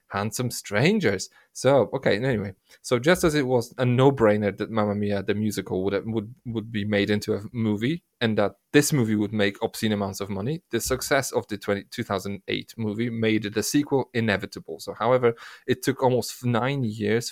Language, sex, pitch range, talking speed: English, male, 110-140 Hz, 195 wpm